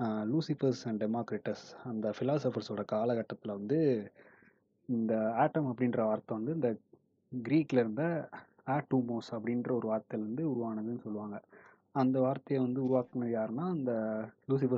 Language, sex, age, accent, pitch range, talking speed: Tamil, male, 20-39, native, 115-130 Hz, 115 wpm